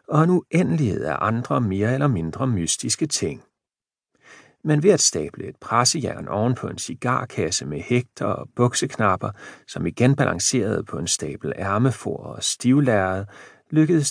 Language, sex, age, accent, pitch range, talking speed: Danish, male, 40-59, native, 100-135 Hz, 145 wpm